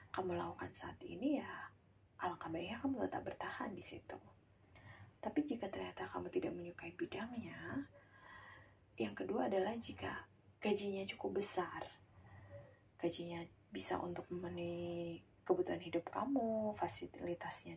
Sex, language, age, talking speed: female, Indonesian, 20-39, 115 wpm